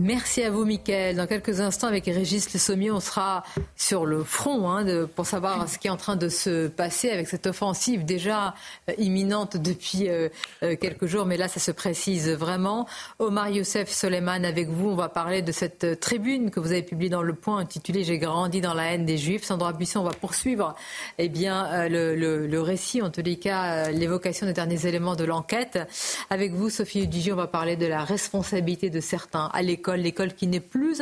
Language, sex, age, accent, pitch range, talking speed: French, female, 40-59, French, 175-210 Hz, 215 wpm